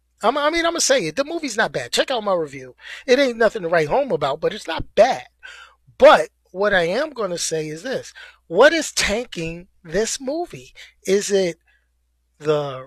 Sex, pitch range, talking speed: male, 160-215 Hz, 195 wpm